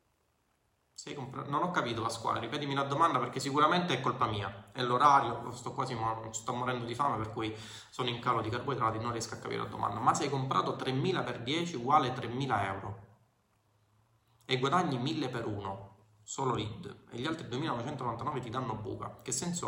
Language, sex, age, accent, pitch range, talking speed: Italian, male, 20-39, native, 120-160 Hz, 185 wpm